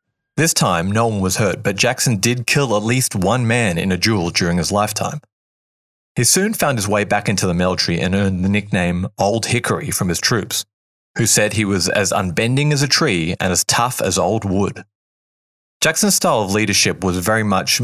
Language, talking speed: English, 200 wpm